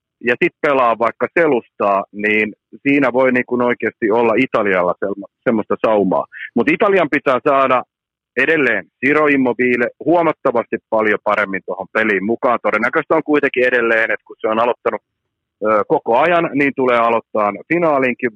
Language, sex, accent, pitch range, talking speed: Finnish, male, native, 115-155 Hz, 135 wpm